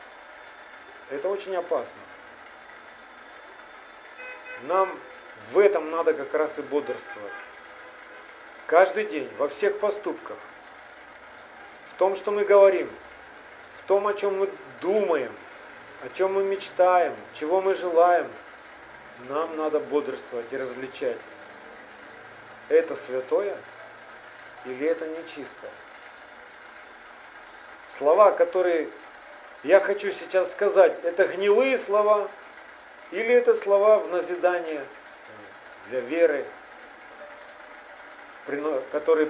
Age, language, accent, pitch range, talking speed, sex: 40-59, Russian, native, 155-210 Hz, 95 wpm, male